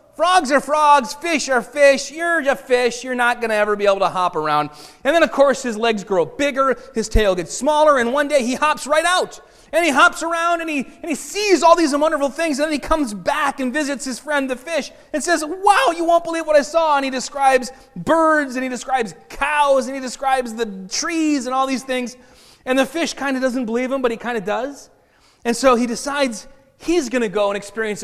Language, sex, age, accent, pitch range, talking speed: English, male, 30-49, American, 210-290 Hz, 240 wpm